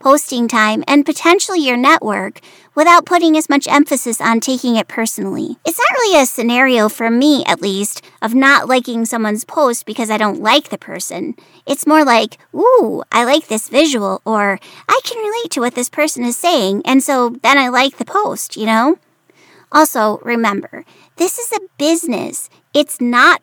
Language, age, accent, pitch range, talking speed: English, 30-49, American, 230-310 Hz, 180 wpm